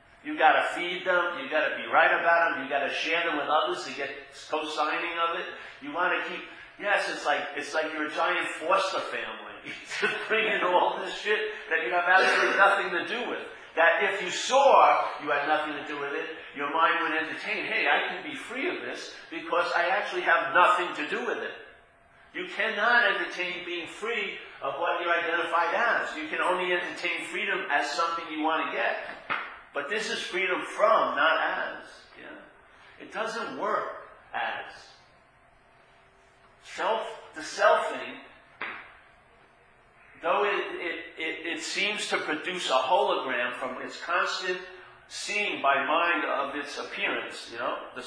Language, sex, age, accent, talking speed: English, male, 50-69, American, 170 wpm